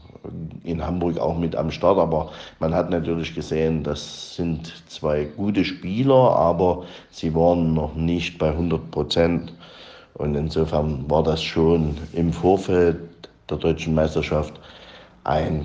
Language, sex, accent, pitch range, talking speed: German, male, German, 80-90 Hz, 135 wpm